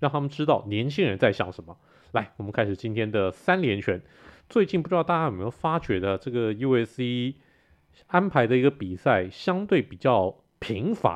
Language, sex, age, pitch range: Chinese, male, 30-49, 110-180 Hz